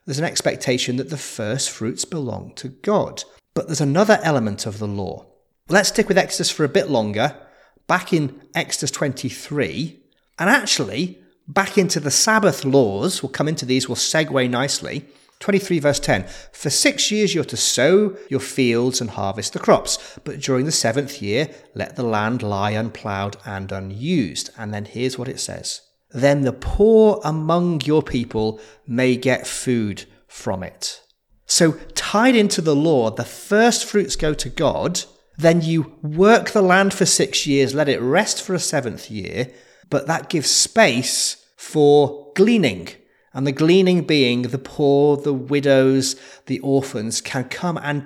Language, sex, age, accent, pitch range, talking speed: English, male, 30-49, British, 130-180 Hz, 165 wpm